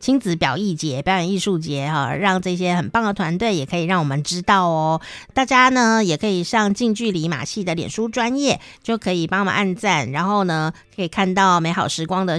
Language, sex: Chinese, female